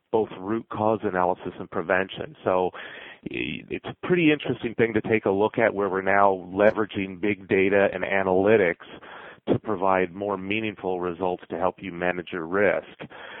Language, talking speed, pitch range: English, 160 wpm, 90-105 Hz